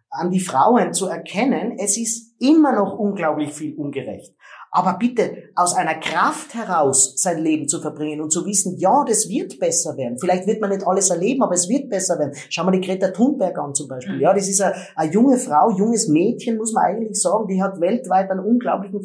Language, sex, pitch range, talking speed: German, male, 170-210 Hz, 210 wpm